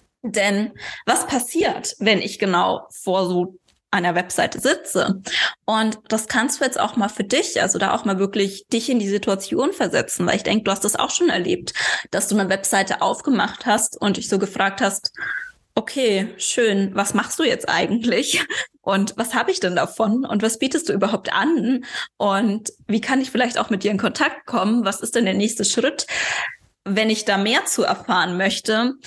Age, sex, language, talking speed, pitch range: 20-39, female, German, 190 wpm, 200-250 Hz